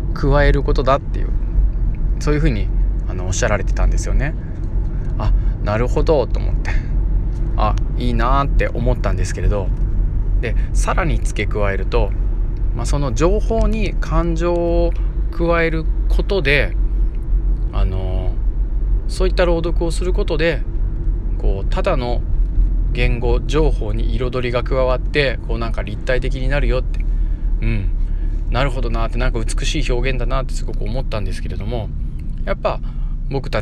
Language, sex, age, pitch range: Japanese, male, 20-39, 90-130 Hz